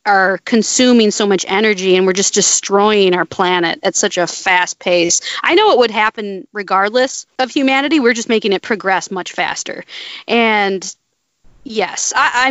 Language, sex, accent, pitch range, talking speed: English, female, American, 195-265 Hz, 165 wpm